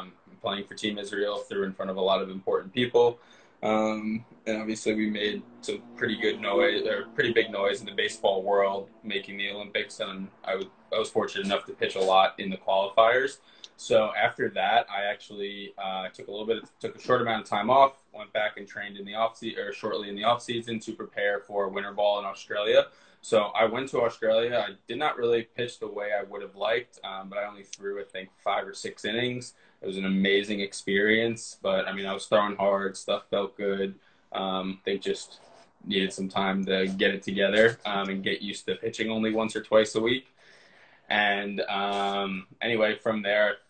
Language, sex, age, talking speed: English, male, 20-39, 210 wpm